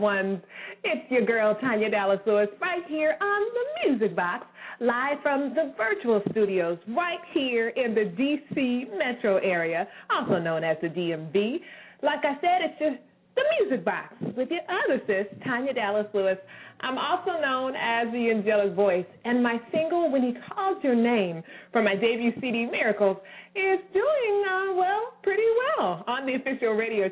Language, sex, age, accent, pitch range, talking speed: English, female, 30-49, American, 205-295 Hz, 160 wpm